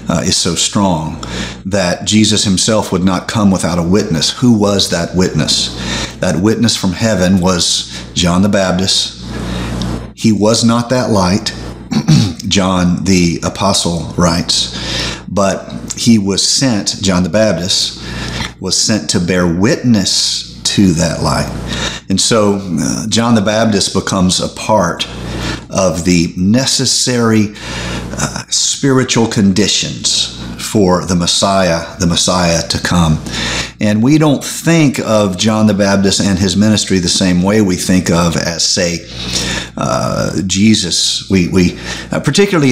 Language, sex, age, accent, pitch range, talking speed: English, male, 40-59, American, 85-110 Hz, 135 wpm